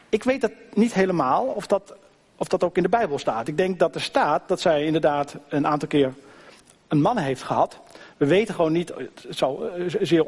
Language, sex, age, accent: Dutch, male, 50-69, Dutch